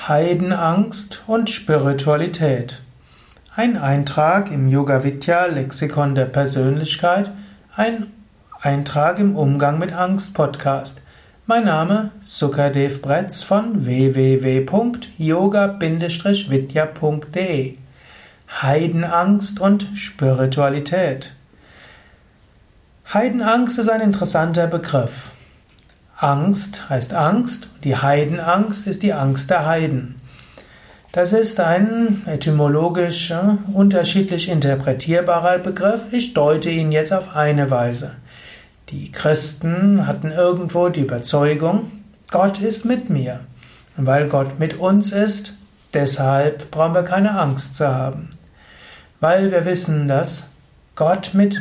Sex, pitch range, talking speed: male, 140-200 Hz, 95 wpm